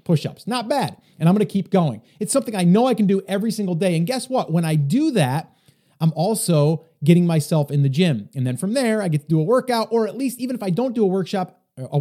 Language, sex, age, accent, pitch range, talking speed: English, male, 30-49, American, 155-210 Hz, 275 wpm